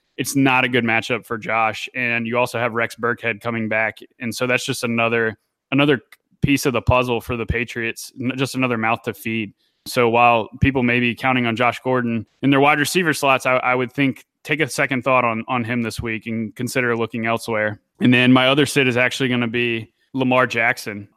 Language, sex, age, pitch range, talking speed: English, male, 20-39, 115-135 Hz, 215 wpm